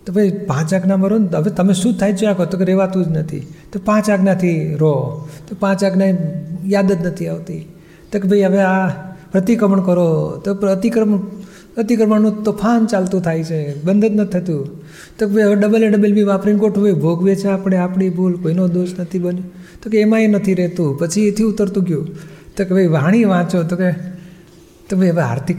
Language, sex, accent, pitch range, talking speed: Gujarati, male, native, 170-195 Hz, 200 wpm